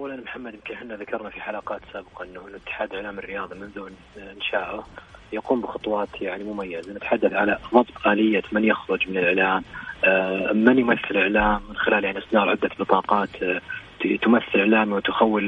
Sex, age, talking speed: male, 30-49, 135 wpm